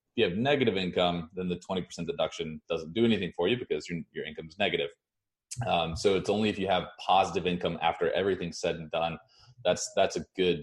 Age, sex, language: 20-39, male, English